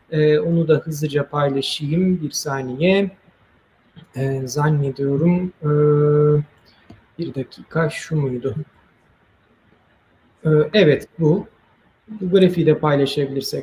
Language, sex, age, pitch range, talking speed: Turkish, male, 40-59, 140-175 Hz, 75 wpm